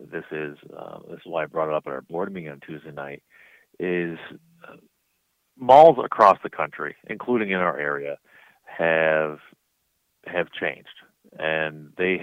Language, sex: English, male